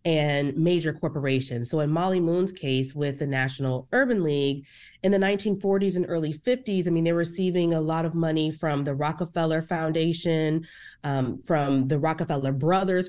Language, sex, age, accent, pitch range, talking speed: English, female, 30-49, American, 150-200 Hz, 165 wpm